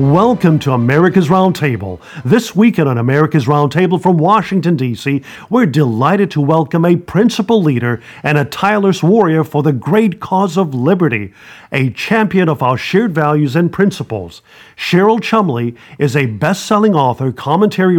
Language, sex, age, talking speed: English, male, 50-69, 150 wpm